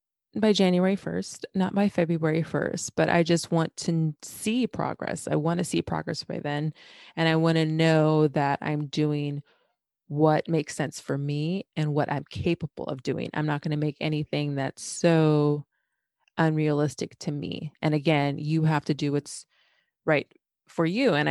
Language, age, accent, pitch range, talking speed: English, 20-39, American, 145-170 Hz, 175 wpm